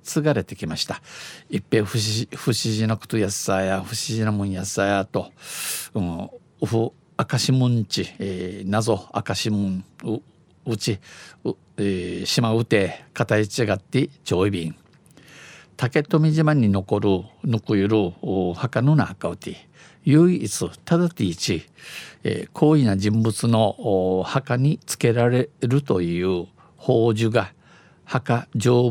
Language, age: Japanese, 50-69